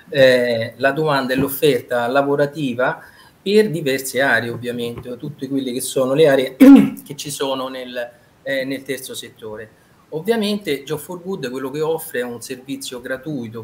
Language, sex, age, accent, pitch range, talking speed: Italian, male, 30-49, native, 120-145 Hz, 150 wpm